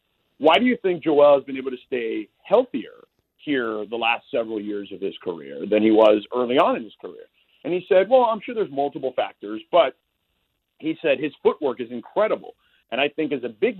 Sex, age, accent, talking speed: male, 40-59, American, 215 wpm